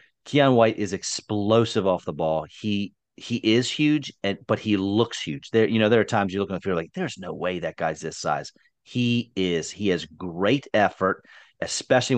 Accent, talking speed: American, 215 wpm